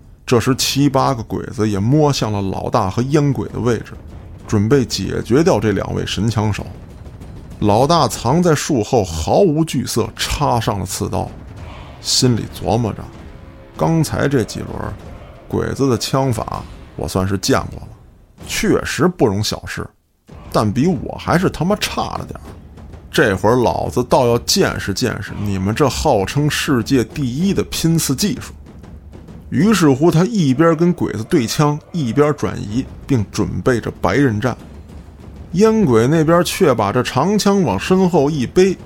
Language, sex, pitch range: Chinese, male, 100-160 Hz